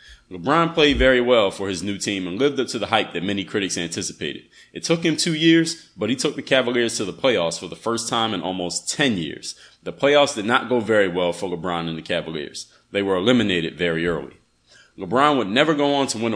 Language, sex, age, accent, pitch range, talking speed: English, male, 30-49, American, 95-130 Hz, 230 wpm